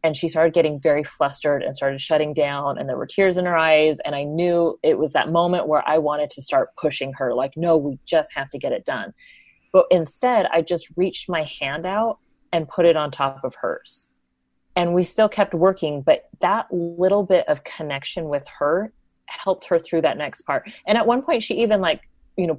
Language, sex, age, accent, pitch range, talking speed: English, female, 30-49, American, 155-205 Hz, 220 wpm